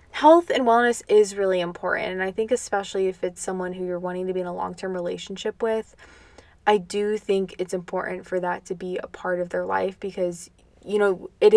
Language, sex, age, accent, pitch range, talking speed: English, female, 20-39, American, 185-215 Hz, 215 wpm